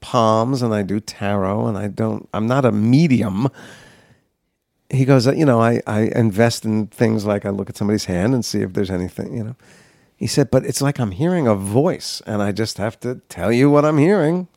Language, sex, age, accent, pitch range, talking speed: English, male, 50-69, American, 105-150 Hz, 220 wpm